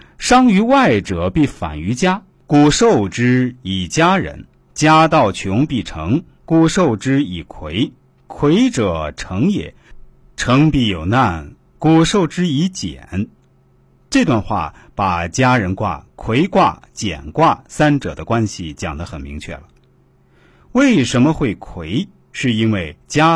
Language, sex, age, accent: Chinese, male, 50-69, native